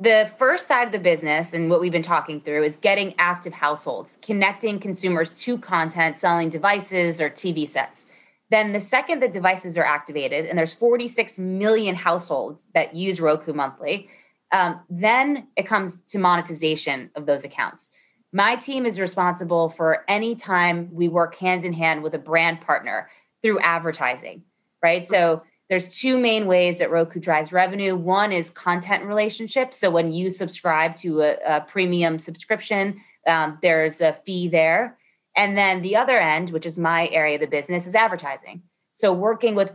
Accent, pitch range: American, 160-200 Hz